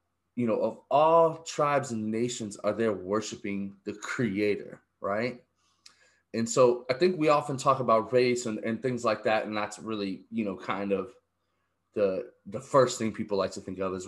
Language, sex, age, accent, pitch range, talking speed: English, male, 20-39, American, 100-120 Hz, 190 wpm